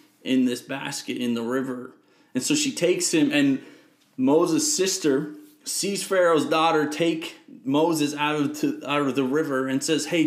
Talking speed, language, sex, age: 160 wpm, English, male, 30-49